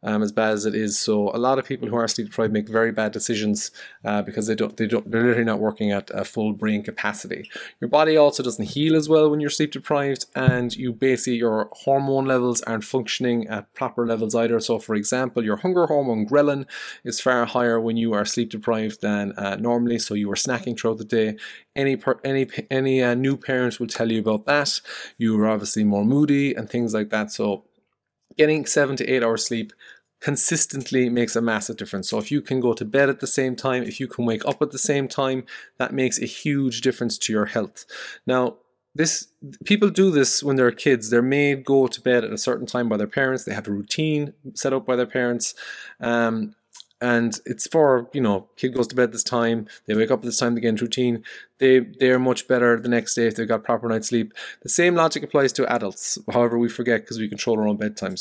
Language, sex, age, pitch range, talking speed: English, male, 20-39, 110-135 Hz, 225 wpm